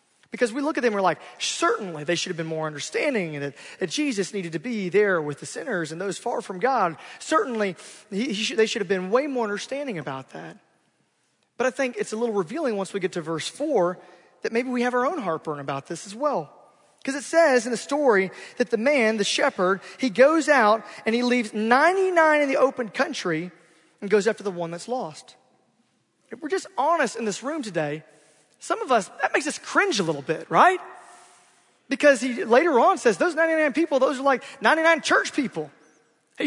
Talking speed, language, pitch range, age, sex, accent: 215 wpm, English, 190-290 Hz, 30-49, male, American